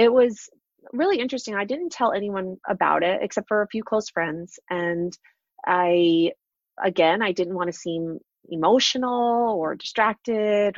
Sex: female